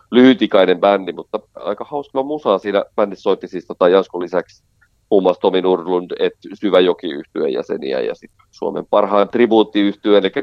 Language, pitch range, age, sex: Finnish, 95-135 Hz, 40-59, male